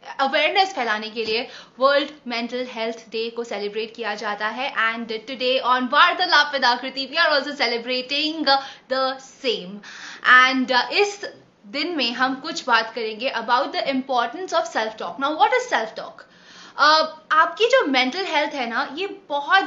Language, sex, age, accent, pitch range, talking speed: Hindi, female, 20-39, native, 250-320 Hz, 145 wpm